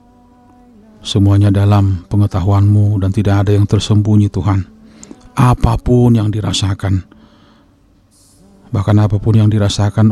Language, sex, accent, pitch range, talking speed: Indonesian, male, native, 100-115 Hz, 95 wpm